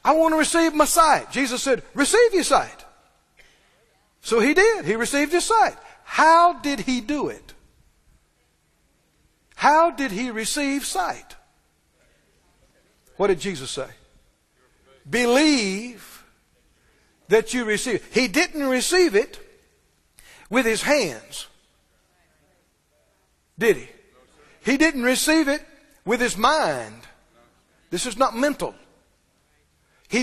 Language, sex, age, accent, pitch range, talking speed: English, male, 60-79, American, 240-335 Hz, 115 wpm